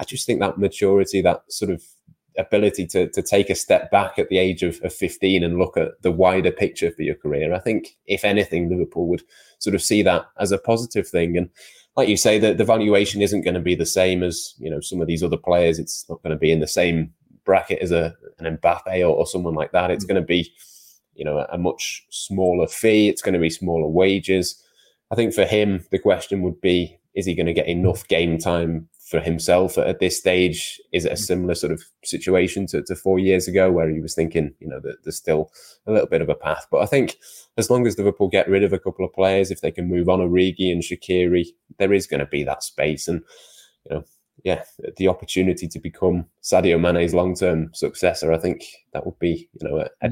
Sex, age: male, 20-39